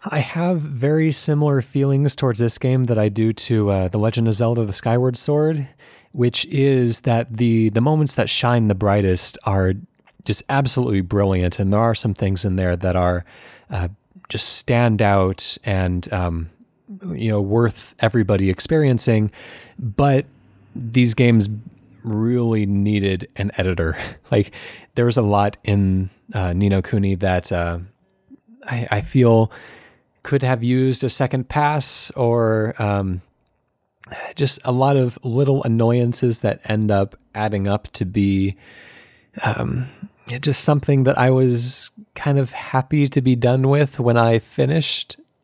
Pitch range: 100-130 Hz